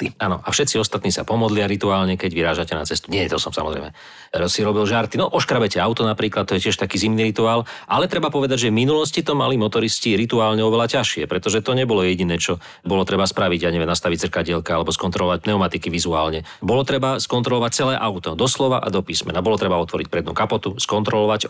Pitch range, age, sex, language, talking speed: 95-115 Hz, 40-59, male, Slovak, 200 wpm